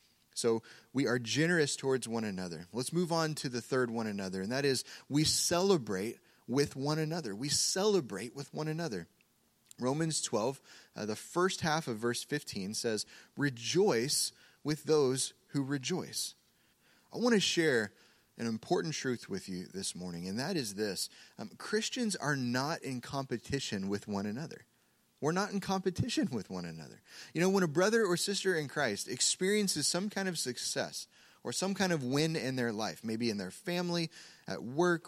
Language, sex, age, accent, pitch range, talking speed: English, male, 30-49, American, 120-180 Hz, 175 wpm